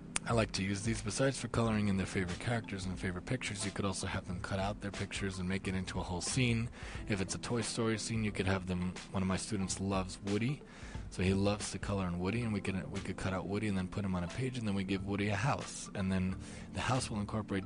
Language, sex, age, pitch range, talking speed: English, male, 20-39, 95-110 Hz, 280 wpm